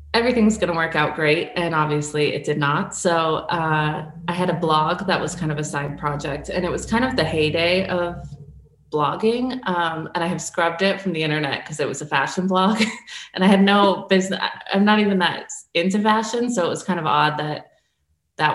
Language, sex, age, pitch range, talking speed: English, female, 20-39, 155-185 Hz, 215 wpm